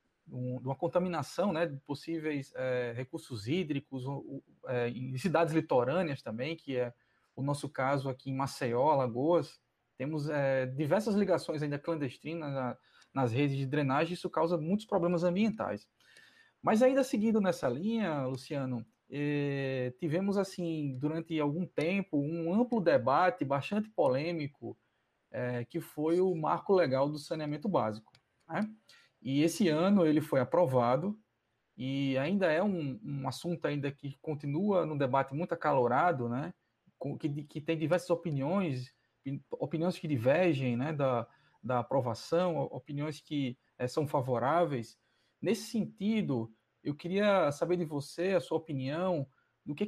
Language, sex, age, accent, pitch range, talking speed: Portuguese, male, 20-39, Brazilian, 135-175 Hz, 140 wpm